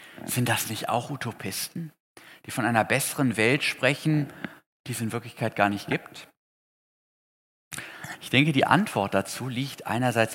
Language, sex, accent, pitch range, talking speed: German, male, German, 115-150 Hz, 145 wpm